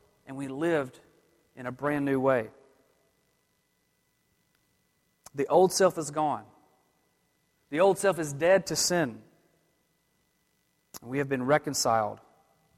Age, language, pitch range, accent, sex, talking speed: 30-49, English, 150-190 Hz, American, male, 115 wpm